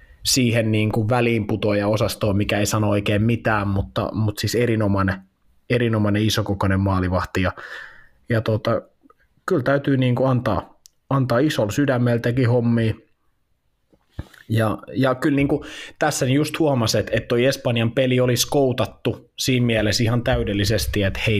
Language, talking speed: Finnish, 125 wpm